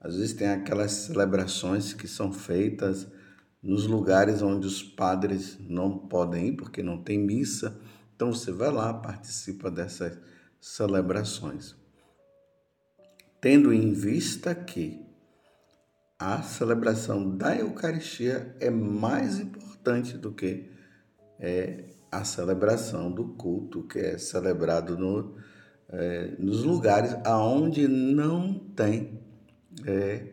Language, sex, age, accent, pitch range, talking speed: Portuguese, male, 50-69, Brazilian, 100-135 Hz, 105 wpm